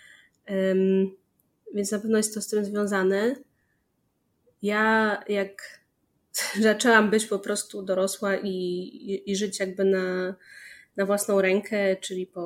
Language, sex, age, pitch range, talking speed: Polish, female, 20-39, 185-210 Hz, 130 wpm